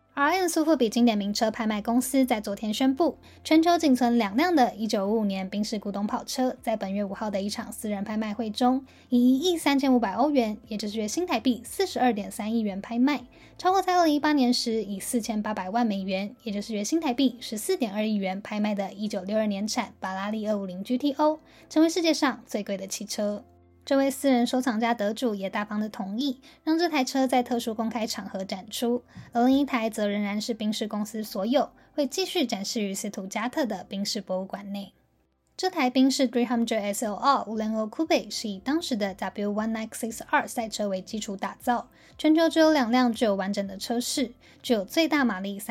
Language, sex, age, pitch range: Chinese, female, 10-29, 205-260 Hz